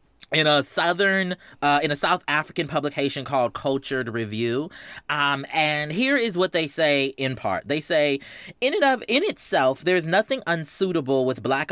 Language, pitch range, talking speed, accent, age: English, 125-175 Hz, 170 wpm, American, 30-49